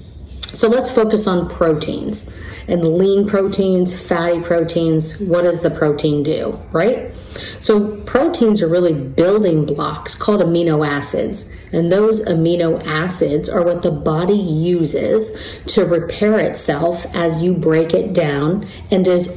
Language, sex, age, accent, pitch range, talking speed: English, female, 40-59, American, 160-195 Hz, 135 wpm